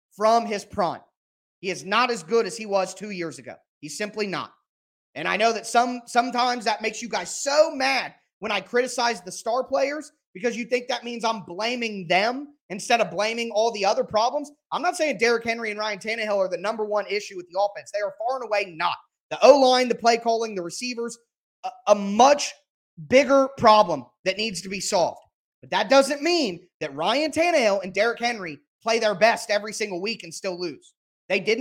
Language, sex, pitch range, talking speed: English, male, 205-260 Hz, 210 wpm